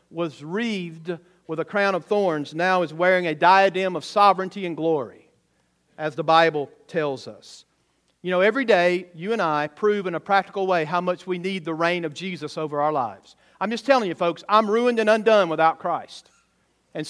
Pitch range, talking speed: 180-220 Hz, 195 wpm